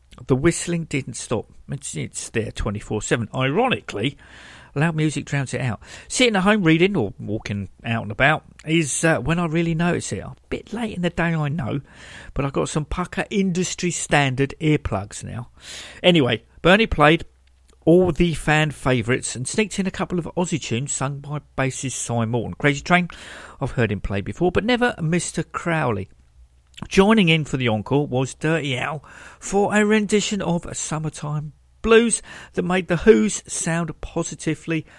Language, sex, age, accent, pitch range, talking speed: English, male, 50-69, British, 125-180 Hz, 170 wpm